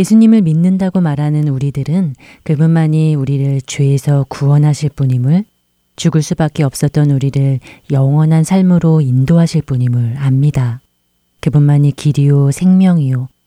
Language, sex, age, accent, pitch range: Korean, female, 30-49, native, 130-160 Hz